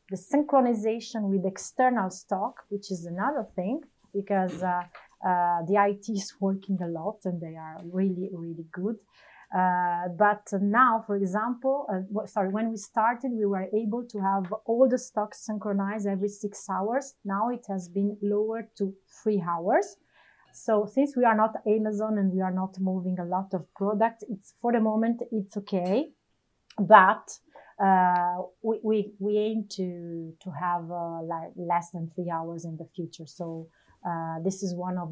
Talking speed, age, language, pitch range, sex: 170 wpm, 30-49, English, 185-220 Hz, female